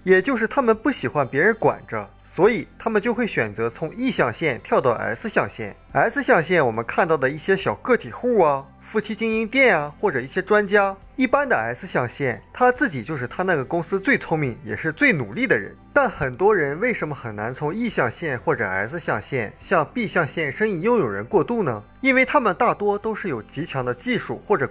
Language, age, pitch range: Chinese, 20-39, 150-240 Hz